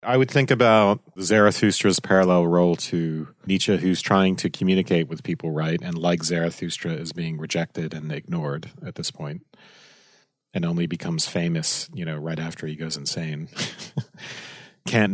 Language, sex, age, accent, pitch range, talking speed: English, male, 40-59, American, 85-105 Hz, 155 wpm